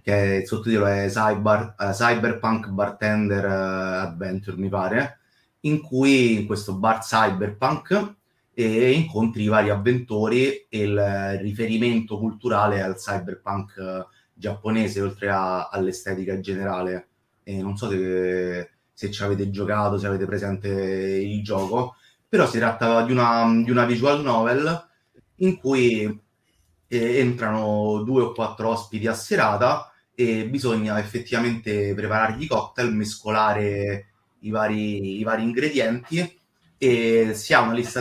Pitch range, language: 100-120 Hz, Italian